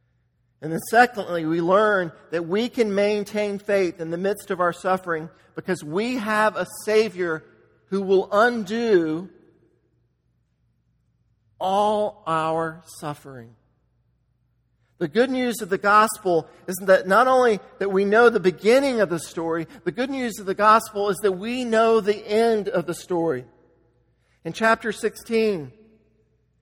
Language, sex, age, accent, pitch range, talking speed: English, male, 50-69, American, 165-220 Hz, 140 wpm